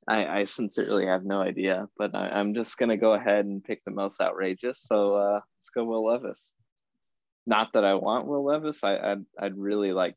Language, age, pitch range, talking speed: English, 20-39, 95-110 Hz, 210 wpm